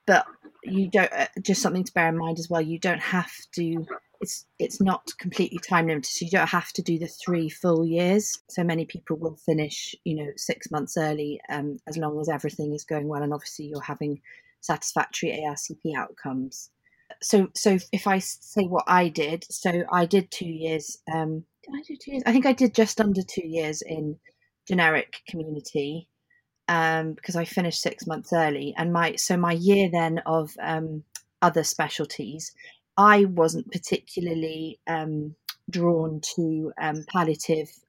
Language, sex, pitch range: English, female, 155-185 Hz